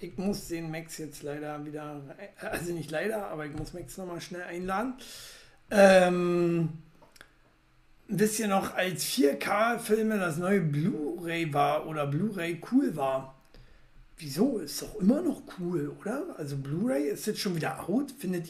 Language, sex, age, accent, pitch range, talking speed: German, male, 60-79, German, 145-215 Hz, 150 wpm